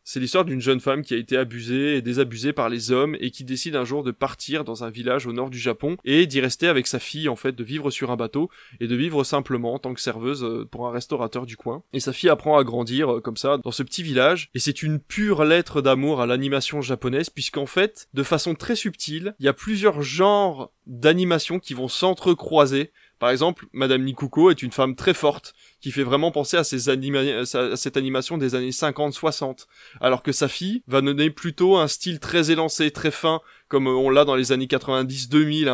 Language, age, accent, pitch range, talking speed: French, 20-39, French, 130-155 Hz, 220 wpm